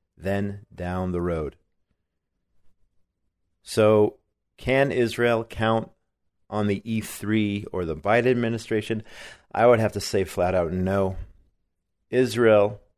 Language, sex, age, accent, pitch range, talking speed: English, male, 40-59, American, 90-115 Hz, 110 wpm